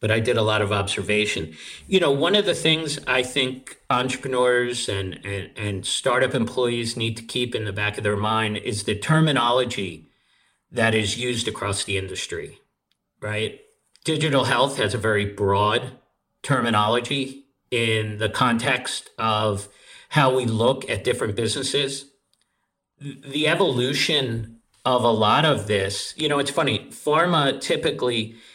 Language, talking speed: English, 145 wpm